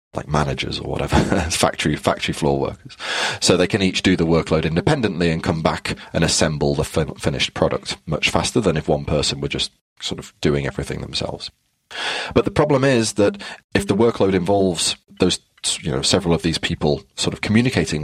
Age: 30-49